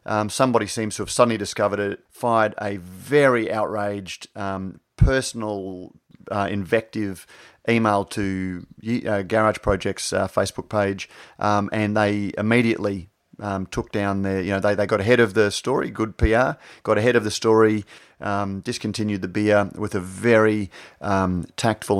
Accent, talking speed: Australian, 155 wpm